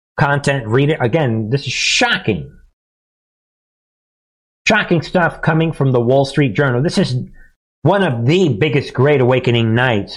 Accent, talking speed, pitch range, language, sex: American, 140 wpm, 120-155 Hz, English, male